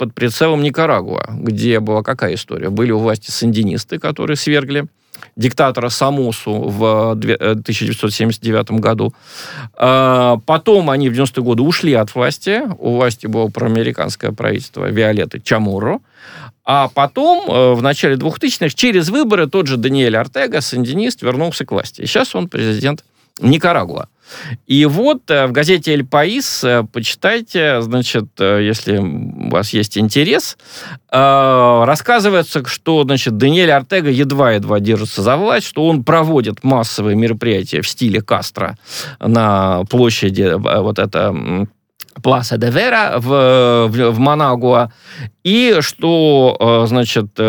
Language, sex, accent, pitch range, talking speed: Russian, male, native, 110-145 Hz, 120 wpm